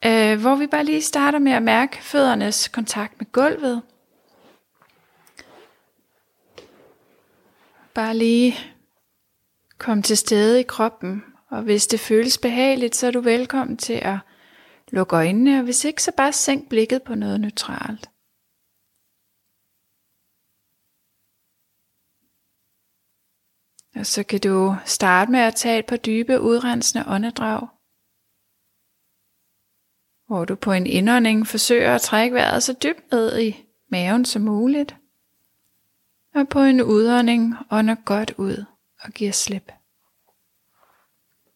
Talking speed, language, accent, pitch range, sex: 115 wpm, Danish, native, 180-240 Hz, female